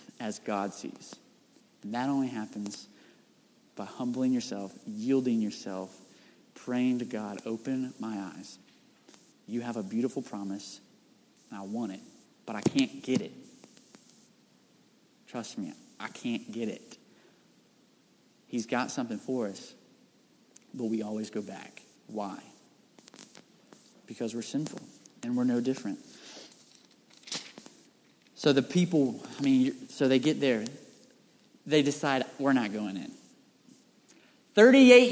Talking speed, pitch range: 125 wpm, 130-215 Hz